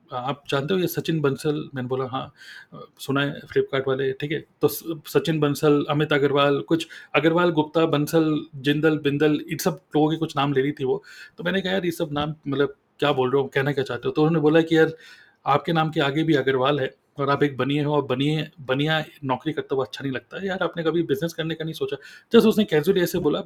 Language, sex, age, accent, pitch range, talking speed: Hindi, male, 30-49, native, 145-180 Hz, 235 wpm